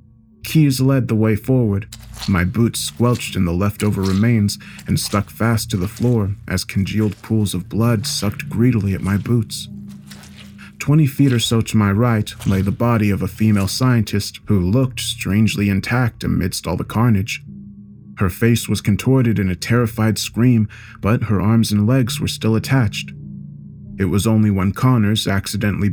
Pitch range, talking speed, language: 100-120 Hz, 165 wpm, English